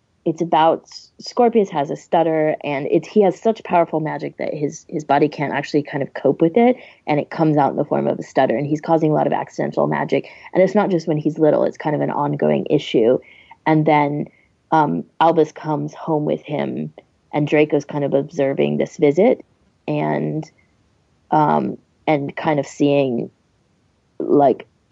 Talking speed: 185 wpm